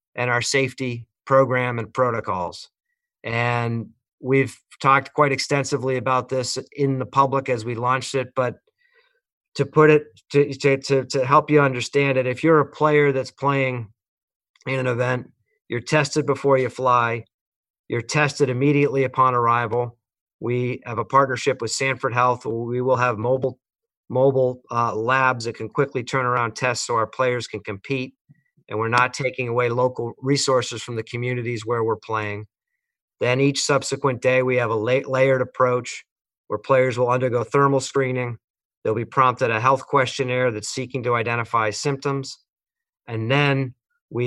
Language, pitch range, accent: English, 120-135 Hz, American